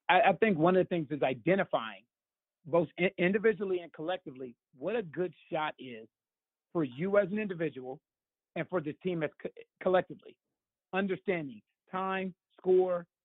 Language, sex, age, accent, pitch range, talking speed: English, male, 40-59, American, 165-215 Hz, 145 wpm